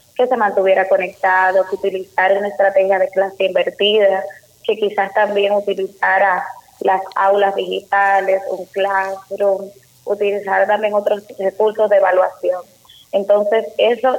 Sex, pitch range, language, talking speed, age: female, 195-230 Hz, Spanish, 120 wpm, 20-39